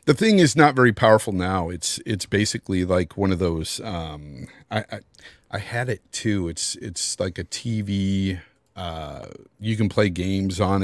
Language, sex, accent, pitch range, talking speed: English, male, American, 85-115 Hz, 175 wpm